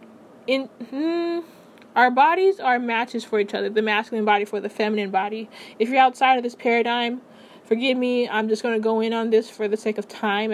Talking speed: 210 wpm